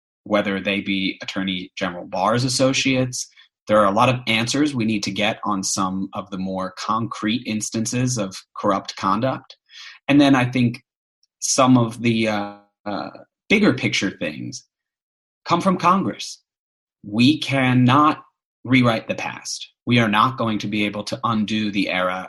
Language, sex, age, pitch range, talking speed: English, male, 30-49, 95-125 Hz, 155 wpm